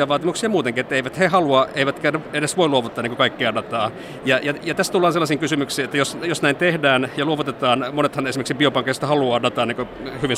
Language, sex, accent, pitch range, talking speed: Finnish, male, native, 125-145 Hz, 185 wpm